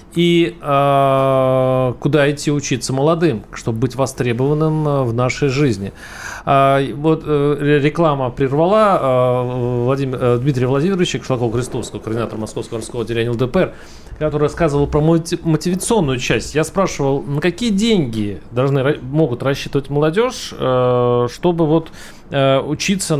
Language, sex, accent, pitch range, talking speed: Russian, male, native, 130-170 Hz, 125 wpm